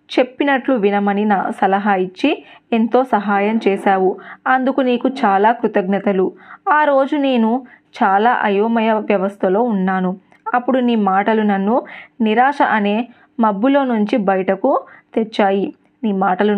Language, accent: Telugu, native